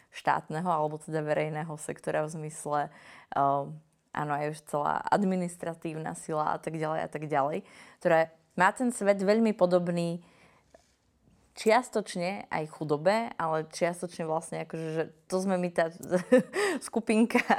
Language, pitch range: Slovak, 160-185 Hz